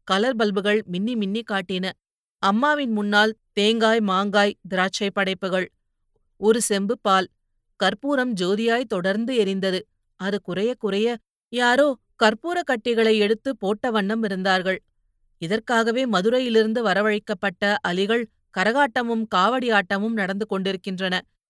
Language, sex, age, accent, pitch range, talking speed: Tamil, female, 30-49, native, 190-230 Hz, 100 wpm